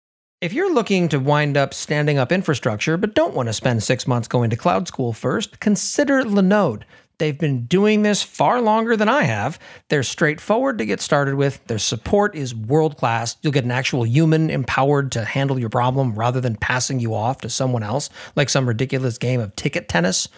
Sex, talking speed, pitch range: male, 195 wpm, 125-180 Hz